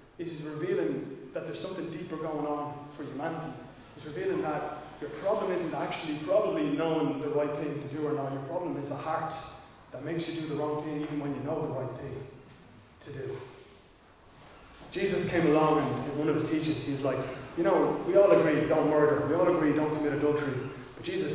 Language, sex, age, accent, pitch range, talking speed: English, male, 20-39, Irish, 145-170 Hz, 205 wpm